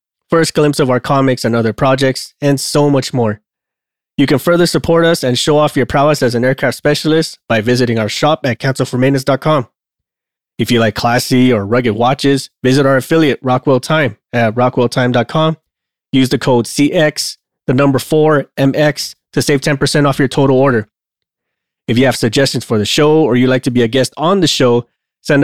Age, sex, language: 20-39, male, English